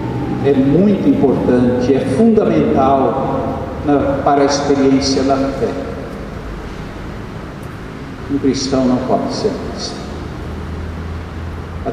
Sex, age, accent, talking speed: male, 60-79, Brazilian, 90 wpm